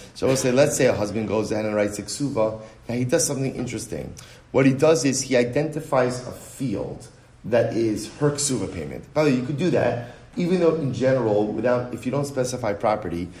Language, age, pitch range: English, 30-49, 115-140 Hz